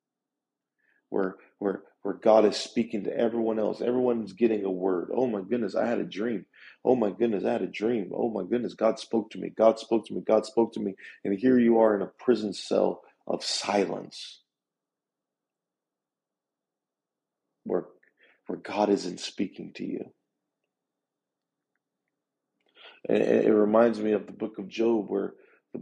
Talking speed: 160 wpm